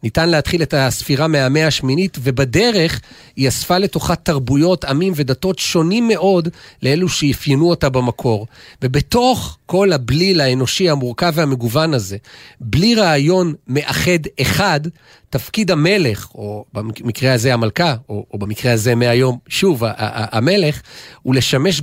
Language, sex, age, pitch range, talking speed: Hebrew, male, 40-59, 130-175 Hz, 120 wpm